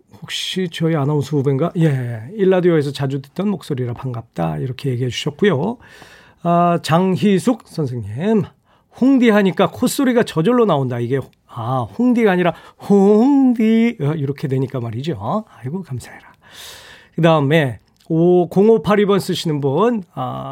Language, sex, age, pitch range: Korean, male, 40-59, 140-205 Hz